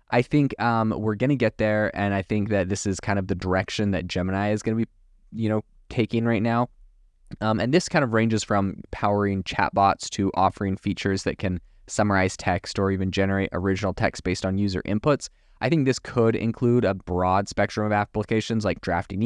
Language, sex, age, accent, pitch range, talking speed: English, male, 20-39, American, 95-110 Hz, 205 wpm